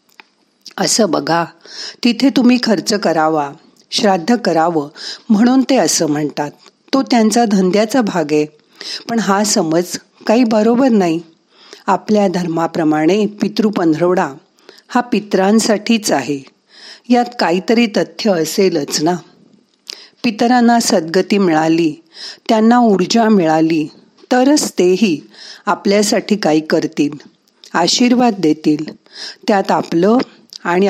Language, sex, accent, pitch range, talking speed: Marathi, female, native, 165-230 Hz, 100 wpm